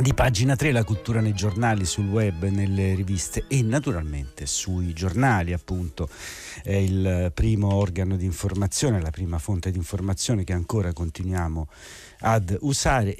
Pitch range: 90-115 Hz